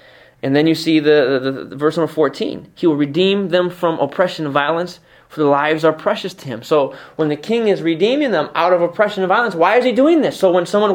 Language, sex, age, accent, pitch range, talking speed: English, male, 20-39, American, 150-250 Hz, 245 wpm